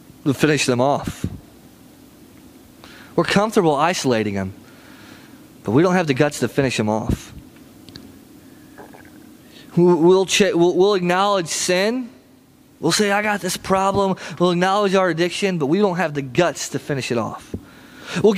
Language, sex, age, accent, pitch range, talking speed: English, male, 20-39, American, 175-245 Hz, 145 wpm